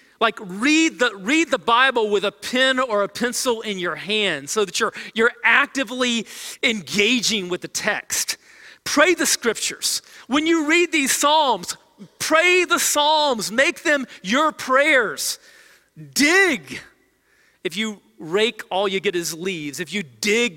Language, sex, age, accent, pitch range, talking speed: English, male, 40-59, American, 165-245 Hz, 150 wpm